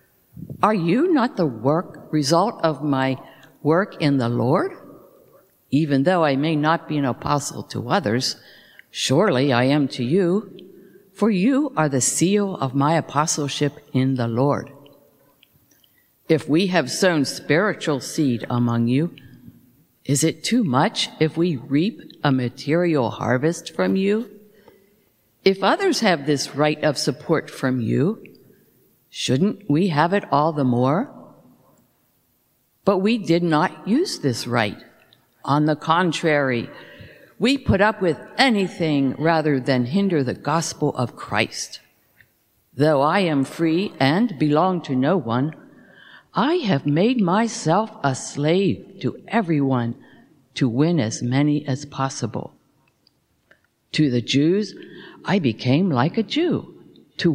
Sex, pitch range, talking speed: female, 135-185 Hz, 135 wpm